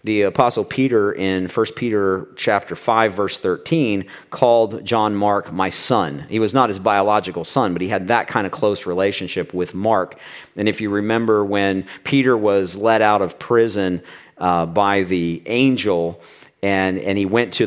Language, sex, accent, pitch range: English, male, American, 95-110 Hz